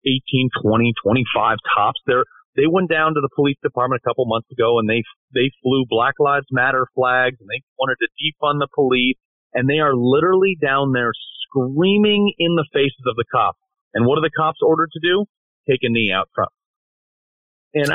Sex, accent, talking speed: male, American, 195 wpm